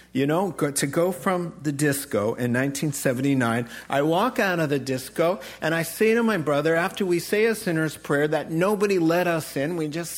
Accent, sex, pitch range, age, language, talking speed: American, male, 135-180 Hz, 50-69, English, 200 wpm